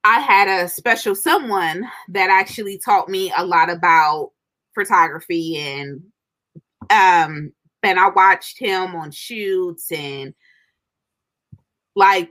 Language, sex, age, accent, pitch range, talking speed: English, female, 20-39, American, 185-240 Hz, 110 wpm